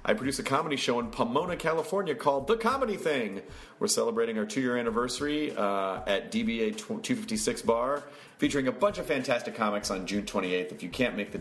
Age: 30-49